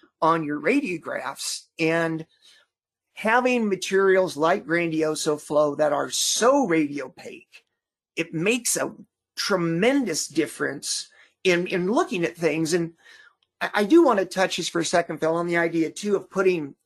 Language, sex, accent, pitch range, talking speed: English, male, American, 165-215 Hz, 145 wpm